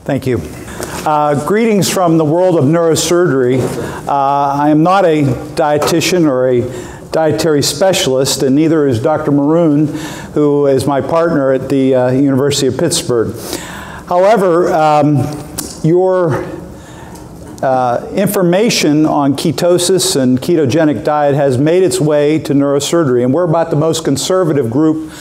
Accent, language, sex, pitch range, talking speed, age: American, English, male, 140-165 Hz, 135 wpm, 50-69